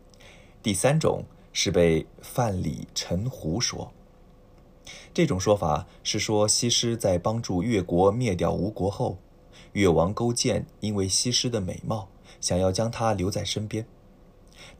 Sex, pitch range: male, 90-115 Hz